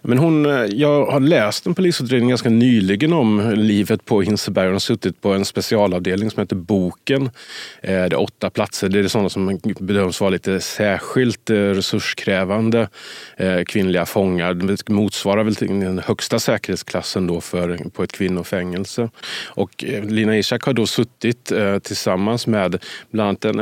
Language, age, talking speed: Swedish, 30-49, 145 wpm